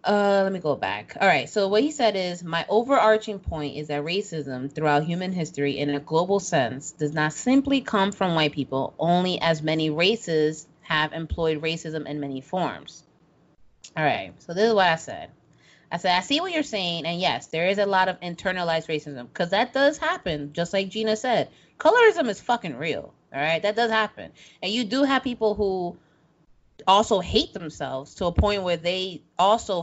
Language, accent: English, American